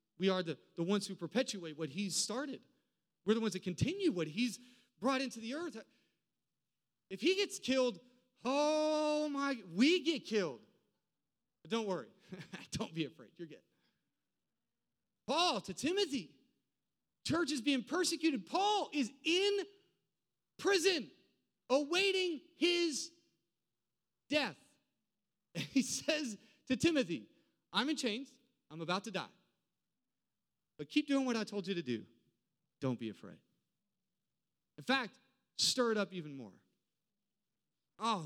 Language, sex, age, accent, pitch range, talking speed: English, male, 30-49, American, 185-280 Hz, 130 wpm